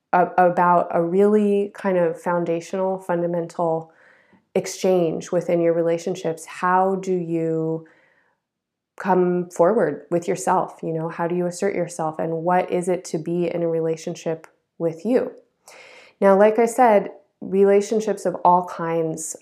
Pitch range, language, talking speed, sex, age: 170-195 Hz, English, 135 wpm, female, 20-39